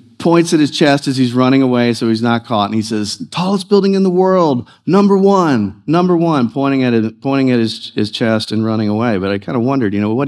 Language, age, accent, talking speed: English, 50-69, American, 250 wpm